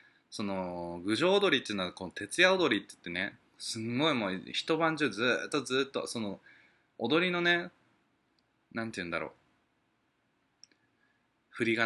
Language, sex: Japanese, male